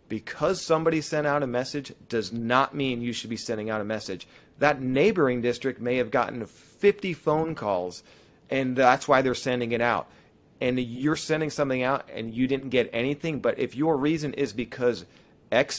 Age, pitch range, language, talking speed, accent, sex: 30-49, 115-140 Hz, English, 185 wpm, American, male